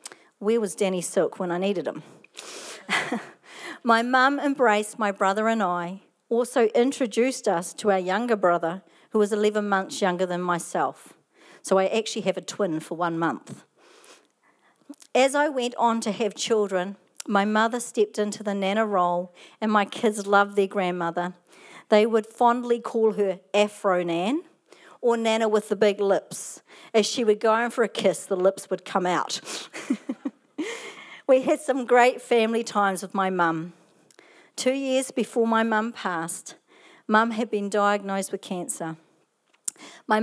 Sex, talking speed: female, 155 wpm